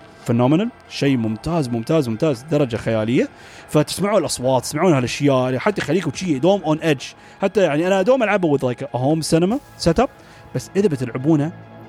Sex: male